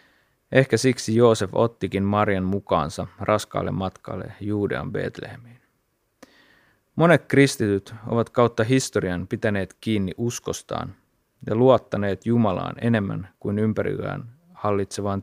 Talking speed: 100 wpm